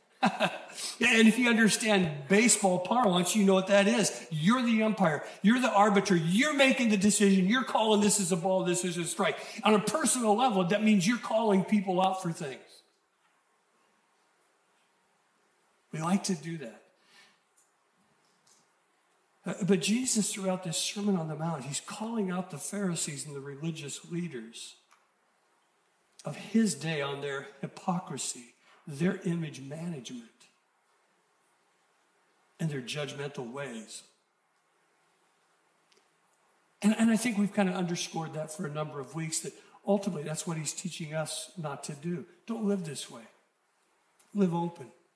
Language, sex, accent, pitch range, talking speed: English, male, American, 165-205 Hz, 145 wpm